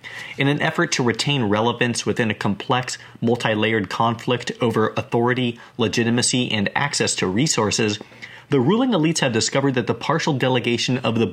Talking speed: 155 wpm